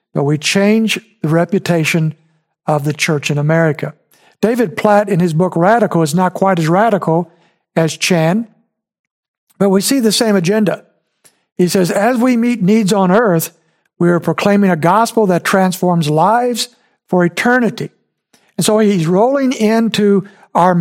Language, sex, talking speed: English, male, 155 wpm